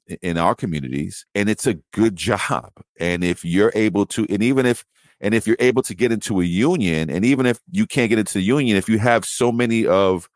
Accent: American